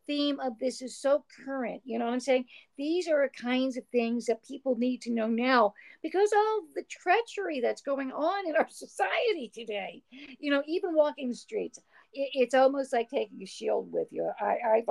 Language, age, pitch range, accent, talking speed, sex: English, 50-69, 230-280 Hz, American, 195 wpm, female